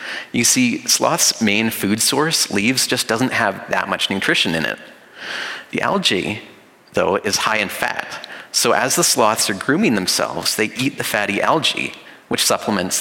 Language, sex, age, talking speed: English, male, 30-49, 165 wpm